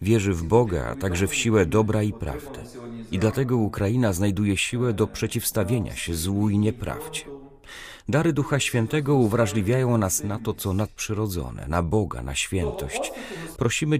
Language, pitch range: Polish, 95-120 Hz